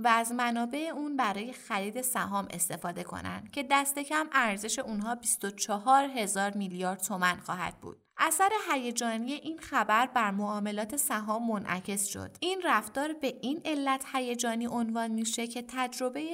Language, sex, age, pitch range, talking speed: Persian, female, 20-39, 200-255 Hz, 145 wpm